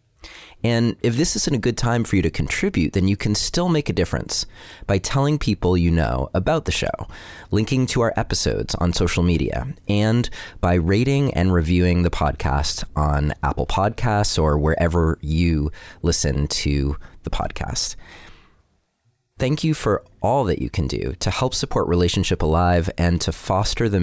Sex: male